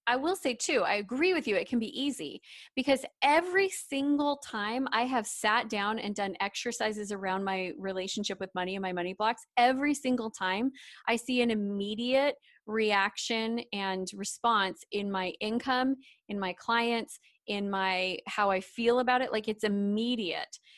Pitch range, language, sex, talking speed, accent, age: 200-245 Hz, English, female, 165 wpm, American, 20-39